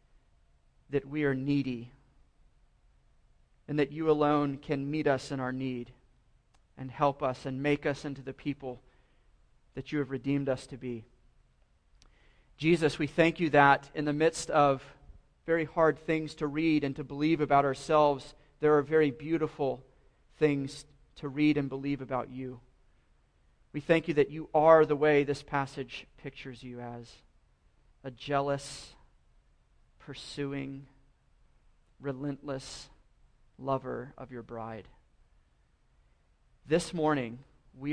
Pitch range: 130-150 Hz